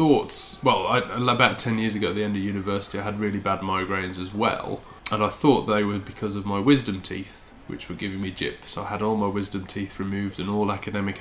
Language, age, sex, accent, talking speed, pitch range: English, 20-39, male, British, 235 wpm, 100-110 Hz